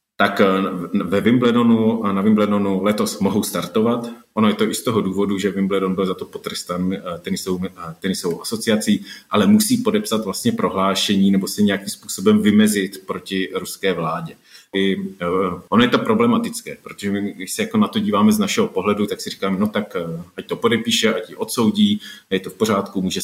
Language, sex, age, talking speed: Slovak, male, 30-49, 180 wpm